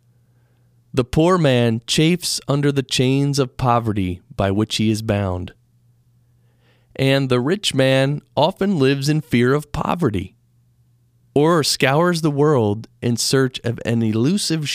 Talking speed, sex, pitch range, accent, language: 135 wpm, male, 120-135 Hz, American, English